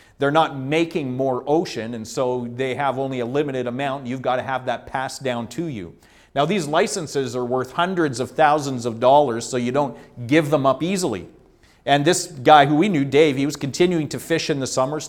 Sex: male